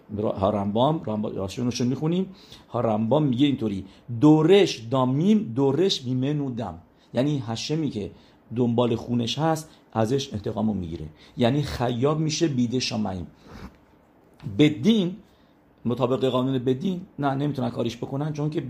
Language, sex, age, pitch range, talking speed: English, male, 50-69, 115-150 Hz, 120 wpm